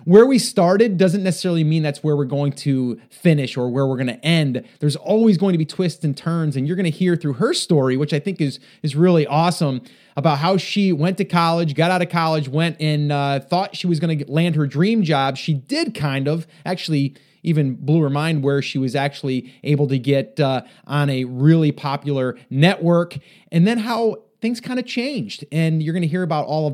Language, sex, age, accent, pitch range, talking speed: English, male, 30-49, American, 140-185 Hz, 225 wpm